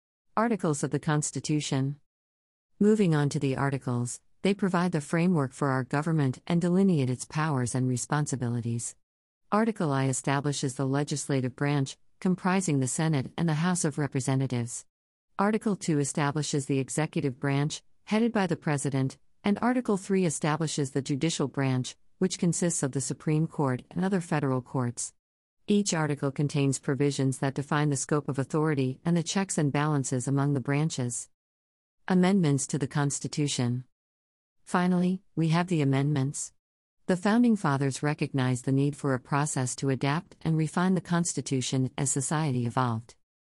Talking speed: 150 wpm